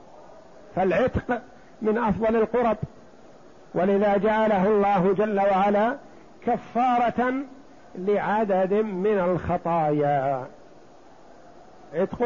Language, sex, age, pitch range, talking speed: Arabic, male, 50-69, 195-235 Hz, 70 wpm